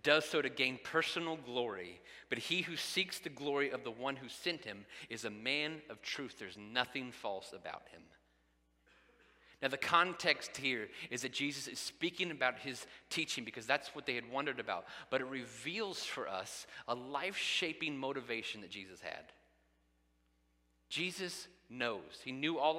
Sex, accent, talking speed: male, American, 165 wpm